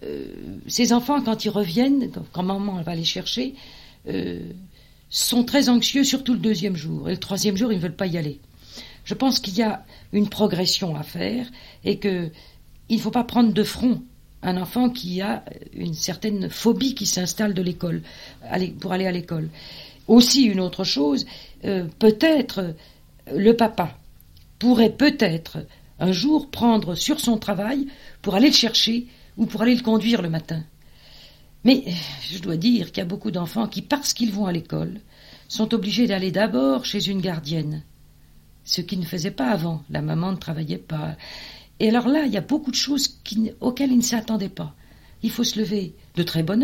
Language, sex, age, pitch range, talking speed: French, female, 50-69, 170-235 Hz, 185 wpm